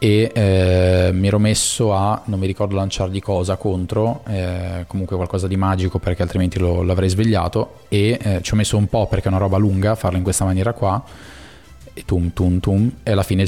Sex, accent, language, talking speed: male, native, Italian, 205 wpm